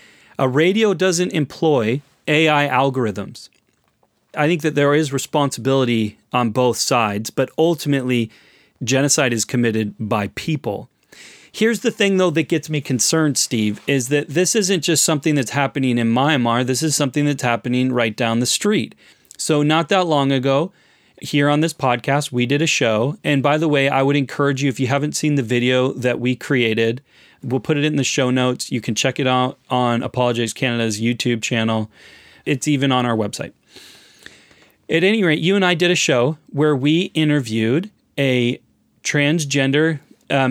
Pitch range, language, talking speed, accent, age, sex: 125-155 Hz, English, 175 wpm, American, 30-49, male